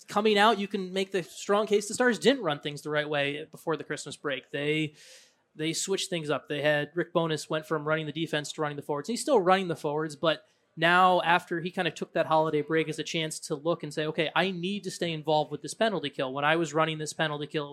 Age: 20-39